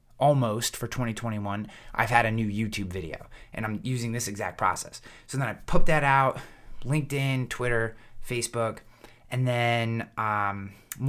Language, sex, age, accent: English, male, 20-39, American